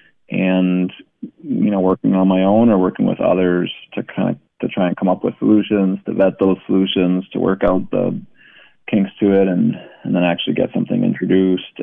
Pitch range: 90-105 Hz